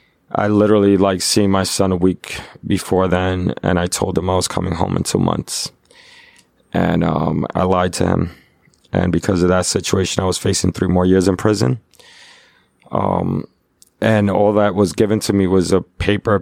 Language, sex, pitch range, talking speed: English, male, 90-100 Hz, 185 wpm